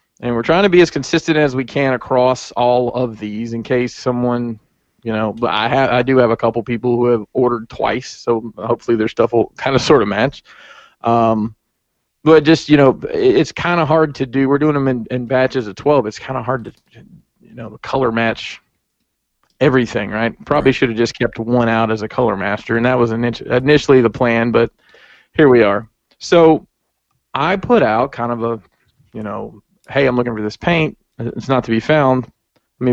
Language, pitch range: English, 115-140 Hz